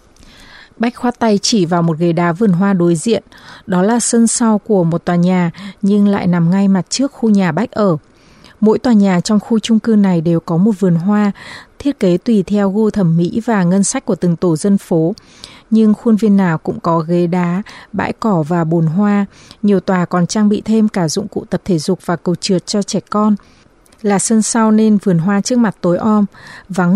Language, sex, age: Vietnamese, female, 20-39